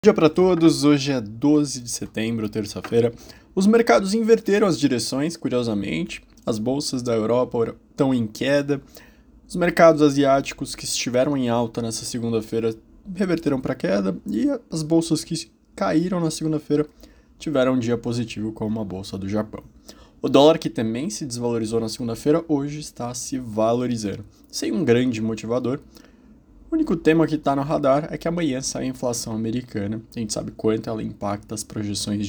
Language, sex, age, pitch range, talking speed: Portuguese, male, 20-39, 115-150 Hz, 165 wpm